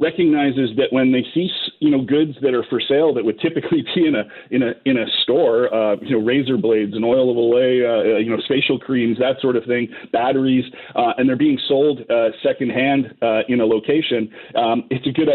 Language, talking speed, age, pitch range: English, 225 wpm, 40-59, 110-135 Hz